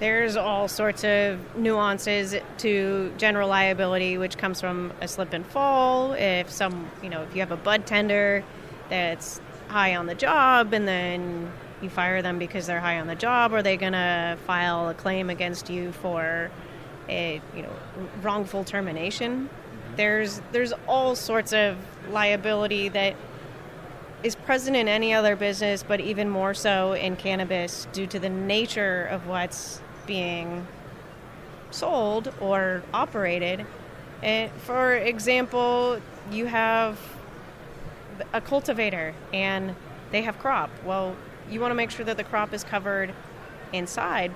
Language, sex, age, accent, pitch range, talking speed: English, female, 30-49, American, 180-215 Hz, 145 wpm